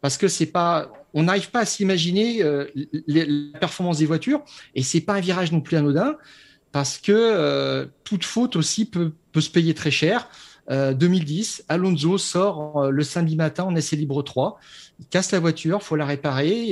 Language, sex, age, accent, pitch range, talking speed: French, male, 40-59, French, 145-190 Hz, 185 wpm